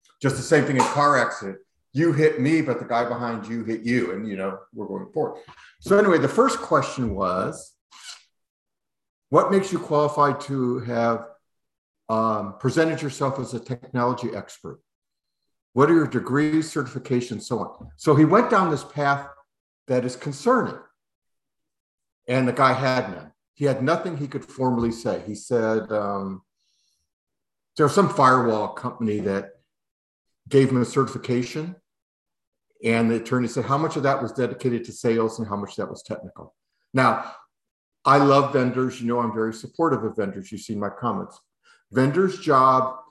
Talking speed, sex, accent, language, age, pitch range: 165 wpm, male, American, English, 50-69, 110-140 Hz